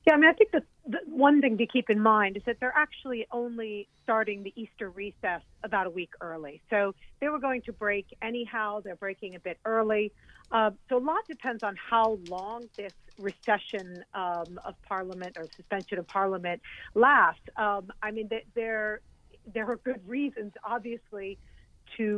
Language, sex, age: English, female, 40-59